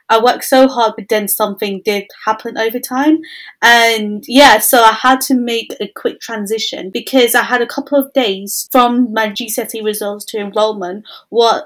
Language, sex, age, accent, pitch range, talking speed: English, female, 20-39, British, 215-255 Hz, 180 wpm